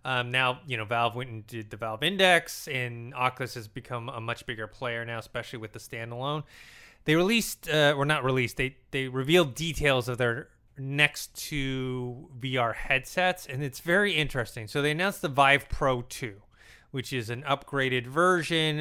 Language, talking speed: English, 180 wpm